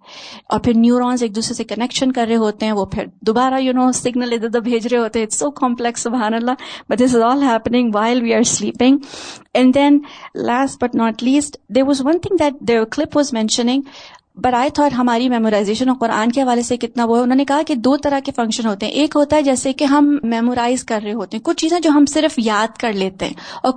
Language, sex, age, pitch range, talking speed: Urdu, female, 30-49, 220-265 Hz, 205 wpm